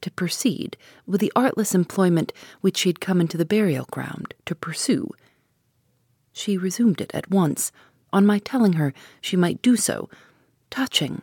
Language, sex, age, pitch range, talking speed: English, female, 40-59, 135-205 Hz, 155 wpm